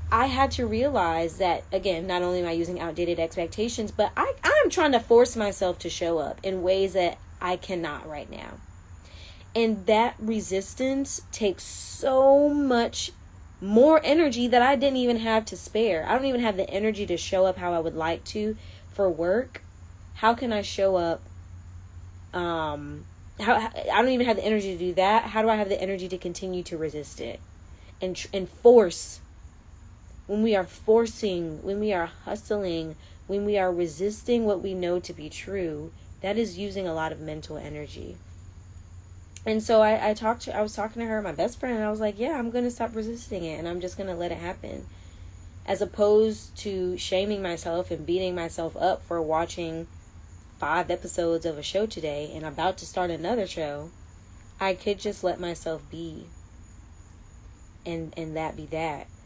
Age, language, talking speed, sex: 20-39, English, 185 wpm, female